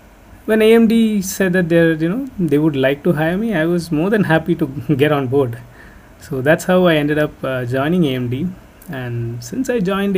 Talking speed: 205 wpm